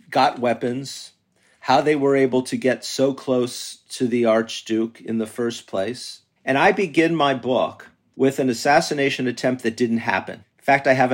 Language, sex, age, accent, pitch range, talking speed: English, male, 50-69, American, 115-135 Hz, 180 wpm